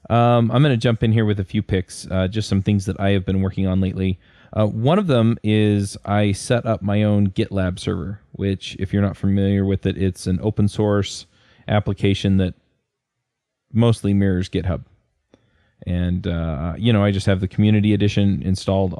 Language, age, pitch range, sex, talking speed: English, 20-39, 95-105 Hz, male, 195 wpm